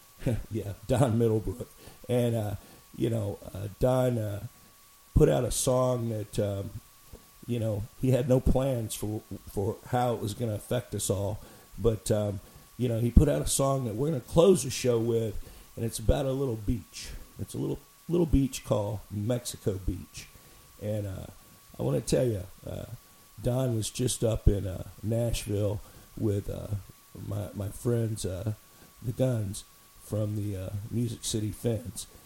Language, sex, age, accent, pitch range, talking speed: English, male, 50-69, American, 105-125 Hz, 170 wpm